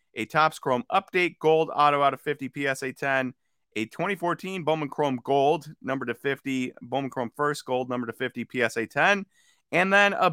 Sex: male